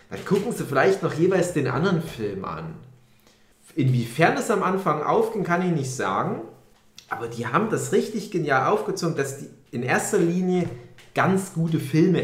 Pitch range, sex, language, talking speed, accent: 130-210 Hz, male, German, 165 wpm, German